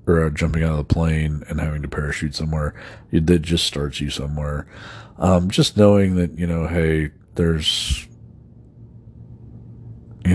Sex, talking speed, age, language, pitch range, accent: male, 145 wpm, 40-59, English, 75-100 Hz, American